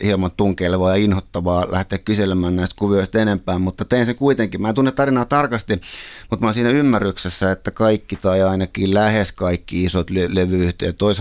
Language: Finnish